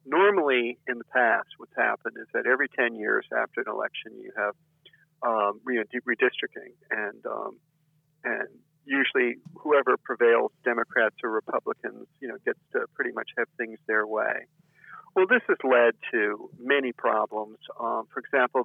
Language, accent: English, American